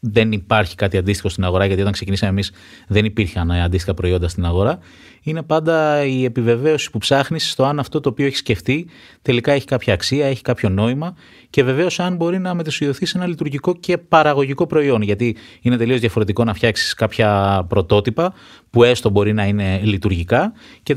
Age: 20-39